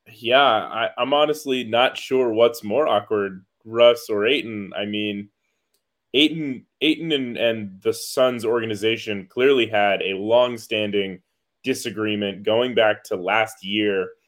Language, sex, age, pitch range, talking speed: English, male, 20-39, 105-125 Hz, 130 wpm